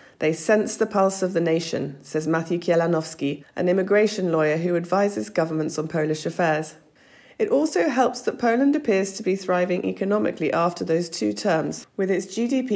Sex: female